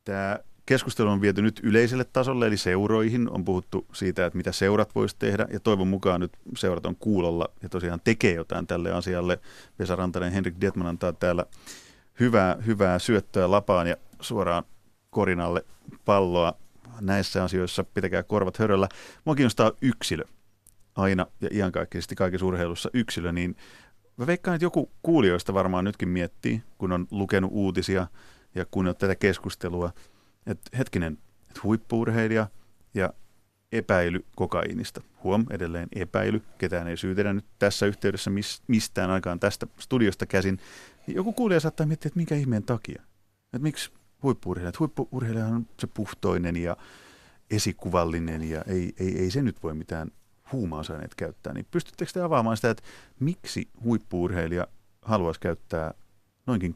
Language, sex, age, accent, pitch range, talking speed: Finnish, male, 30-49, native, 90-110 Hz, 140 wpm